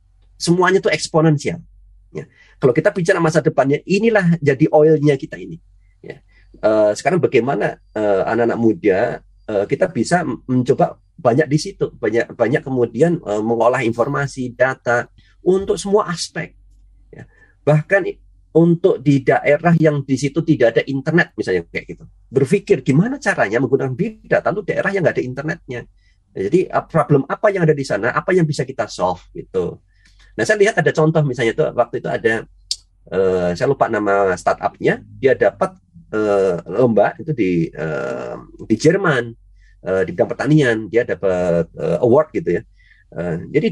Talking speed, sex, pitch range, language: 155 wpm, male, 110-160 Hz, Indonesian